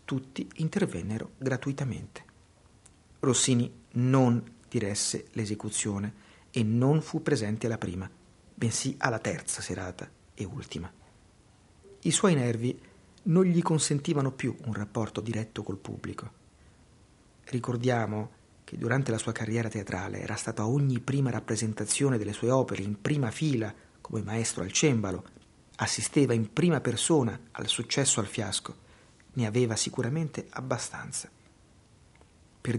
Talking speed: 120 wpm